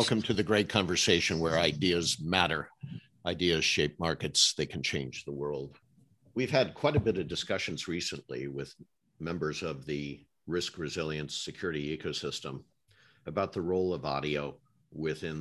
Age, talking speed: 50-69, 150 wpm